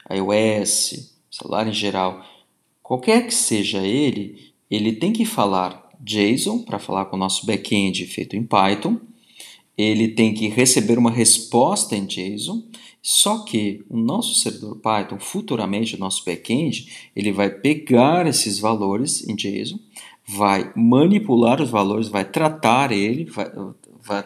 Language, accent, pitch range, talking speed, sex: Portuguese, Brazilian, 105-135 Hz, 140 wpm, male